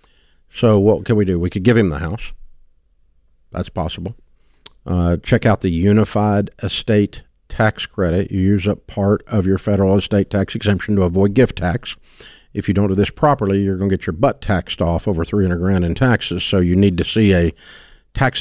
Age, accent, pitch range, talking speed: 50-69, American, 90-115 Hz, 200 wpm